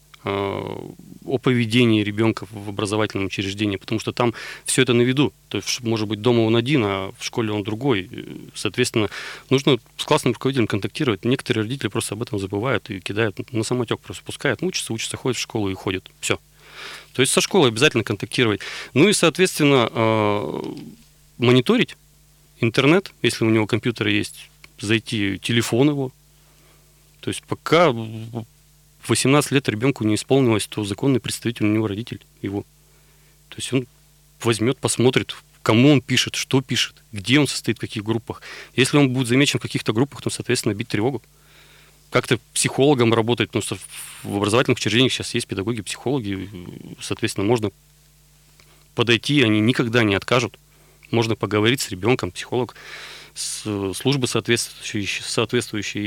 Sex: male